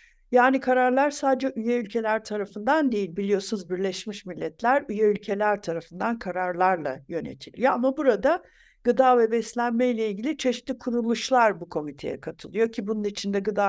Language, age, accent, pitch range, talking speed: Turkish, 60-79, native, 205-260 Hz, 135 wpm